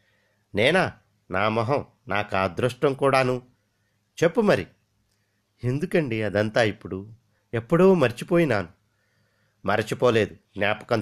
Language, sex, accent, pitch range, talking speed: Telugu, male, native, 105-145 Hz, 80 wpm